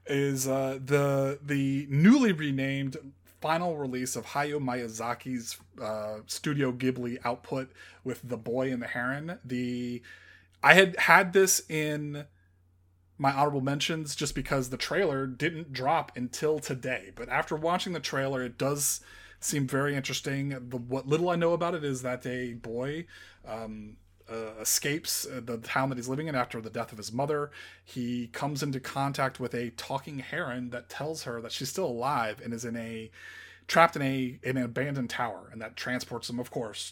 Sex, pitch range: male, 115-140 Hz